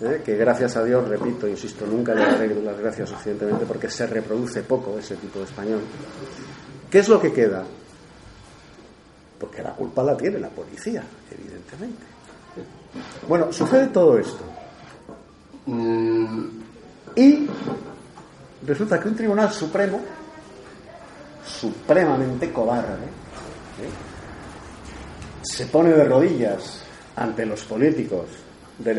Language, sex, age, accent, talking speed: Spanish, male, 50-69, Spanish, 110 wpm